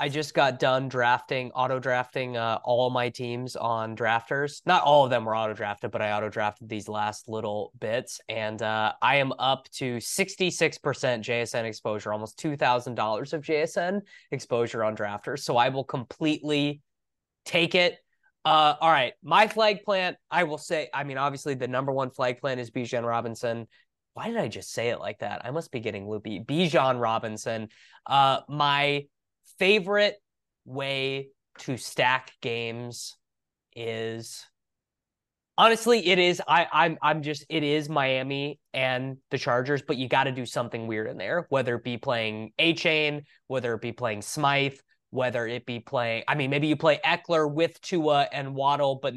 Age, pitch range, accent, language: 20-39, 120-155 Hz, American, English